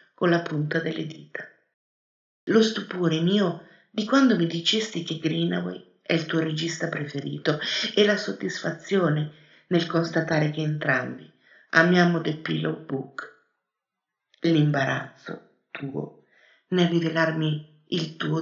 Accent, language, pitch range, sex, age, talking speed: native, Italian, 150-175 Hz, female, 50-69, 115 wpm